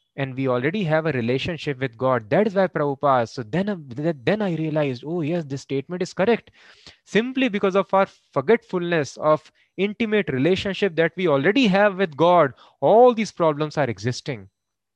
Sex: male